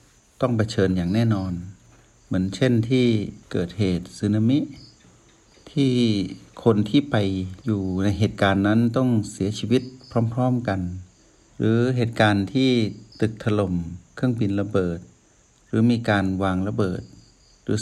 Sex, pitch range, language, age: male, 95-120 Hz, Thai, 60-79